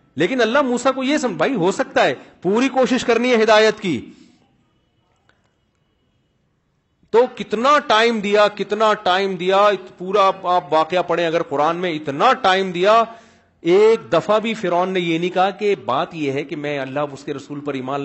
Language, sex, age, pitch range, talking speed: Urdu, male, 40-59, 165-205 Hz, 175 wpm